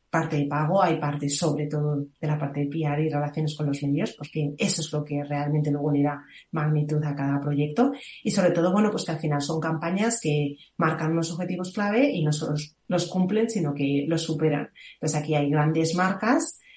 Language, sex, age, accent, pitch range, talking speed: Spanish, female, 30-49, Spanish, 155-180 Hz, 210 wpm